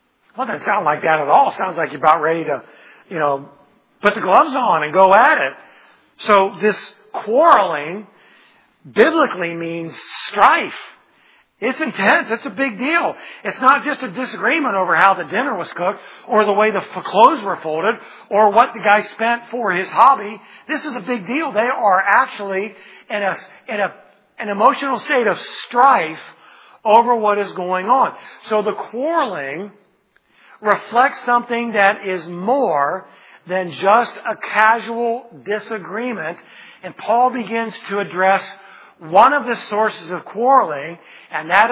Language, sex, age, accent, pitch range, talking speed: English, male, 50-69, American, 180-240 Hz, 160 wpm